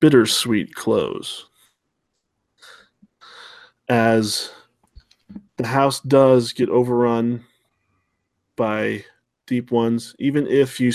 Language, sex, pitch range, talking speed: English, male, 110-125 Hz, 75 wpm